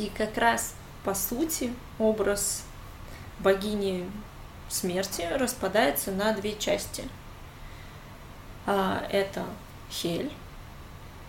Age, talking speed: 20-39, 75 wpm